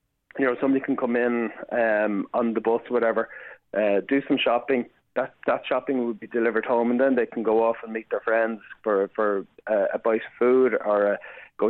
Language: English